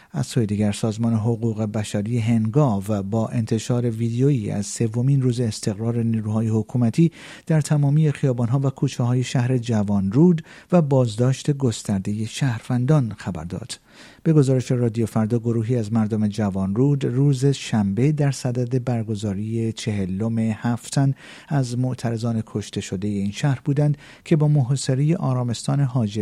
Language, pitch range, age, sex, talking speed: Persian, 110-135 Hz, 50-69, male, 135 wpm